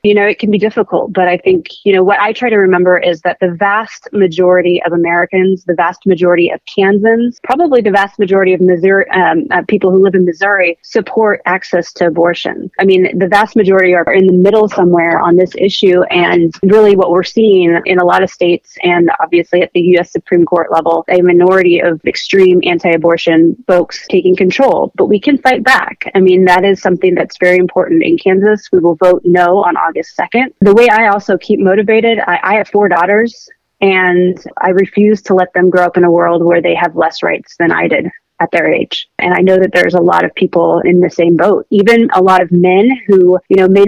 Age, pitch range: 30-49, 175-205 Hz